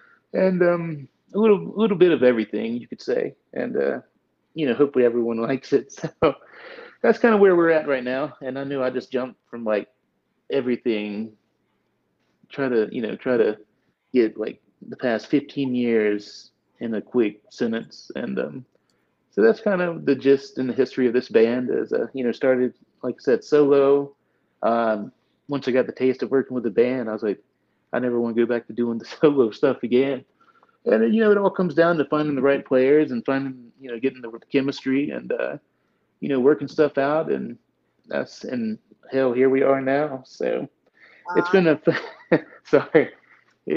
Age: 30-49